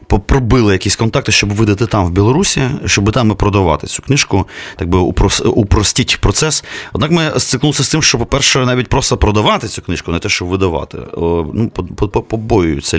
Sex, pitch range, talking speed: male, 90-120 Hz, 165 wpm